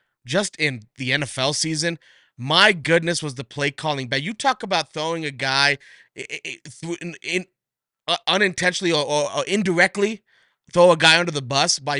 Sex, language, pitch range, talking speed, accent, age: male, English, 140-175 Hz, 150 wpm, American, 20-39